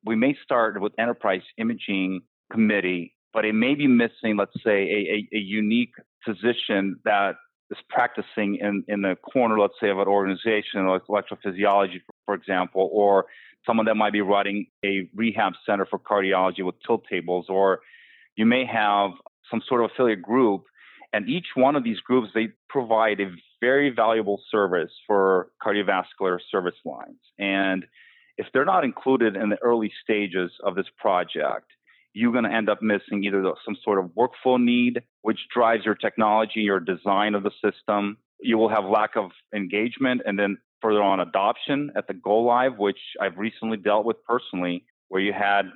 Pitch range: 100-115 Hz